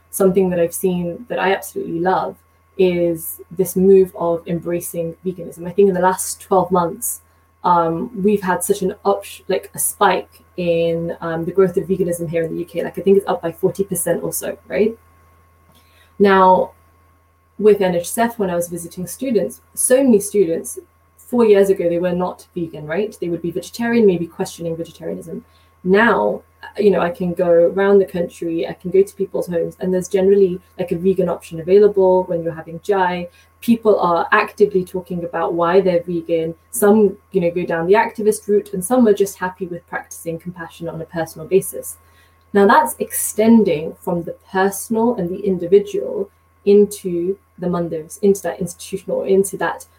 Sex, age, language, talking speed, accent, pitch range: female, 20-39, English, 180 wpm, British, 170-200 Hz